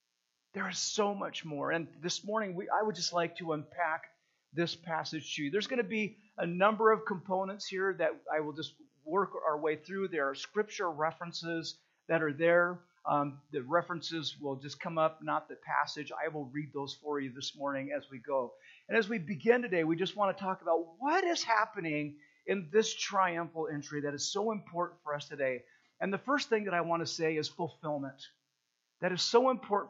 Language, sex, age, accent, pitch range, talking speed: English, male, 50-69, American, 155-215 Hz, 205 wpm